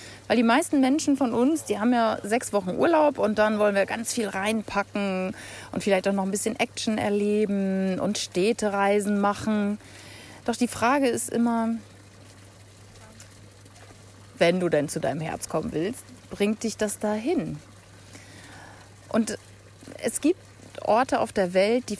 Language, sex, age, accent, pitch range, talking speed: German, female, 30-49, German, 145-225 Hz, 150 wpm